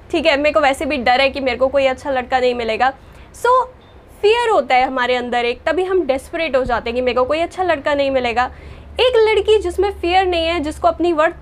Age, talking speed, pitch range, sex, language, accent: 10-29, 245 wpm, 280-380 Hz, female, Hindi, native